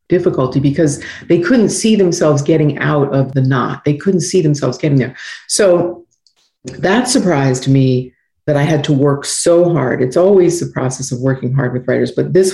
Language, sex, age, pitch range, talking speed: English, female, 50-69, 135-175 Hz, 185 wpm